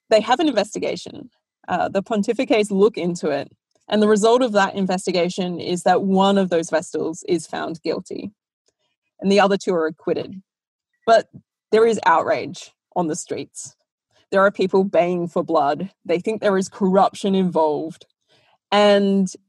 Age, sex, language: 20-39, female, English